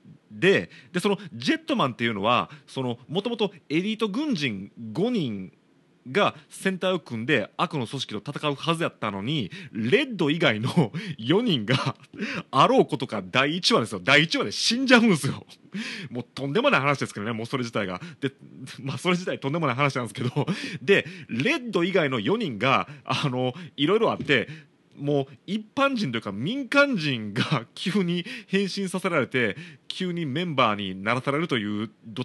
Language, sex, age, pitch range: Japanese, male, 40-59, 130-195 Hz